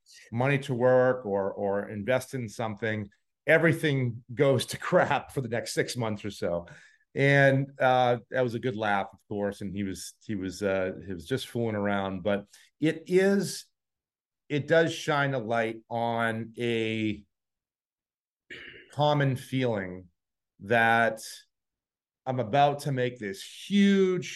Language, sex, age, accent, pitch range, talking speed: English, male, 40-59, American, 105-135 Hz, 145 wpm